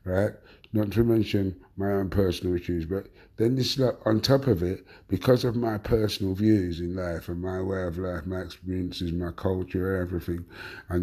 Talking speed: 185 wpm